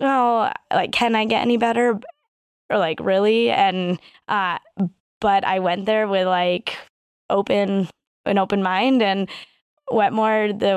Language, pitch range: English, 185-235 Hz